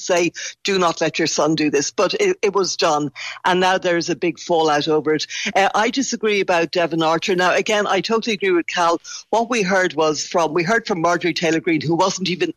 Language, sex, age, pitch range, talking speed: English, female, 60-79, 160-195 Hz, 235 wpm